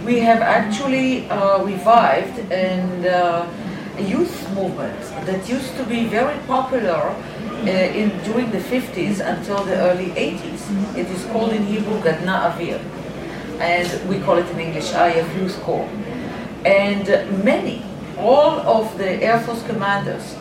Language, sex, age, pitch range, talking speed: English, female, 40-59, 180-230 Hz, 145 wpm